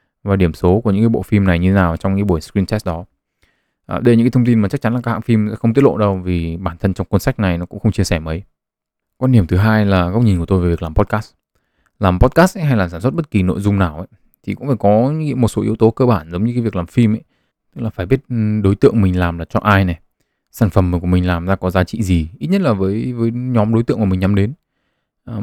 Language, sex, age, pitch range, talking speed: Vietnamese, male, 20-39, 95-120 Hz, 300 wpm